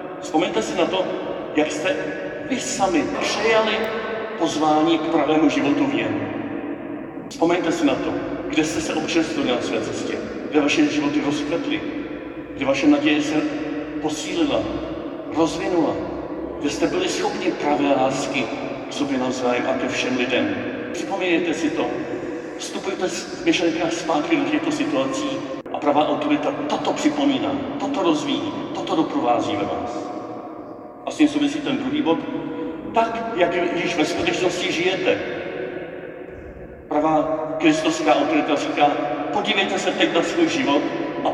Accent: native